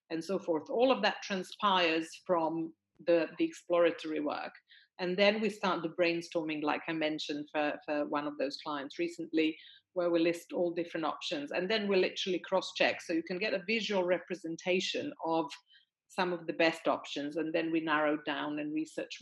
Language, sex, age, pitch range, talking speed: English, female, 40-59, 160-190 Hz, 185 wpm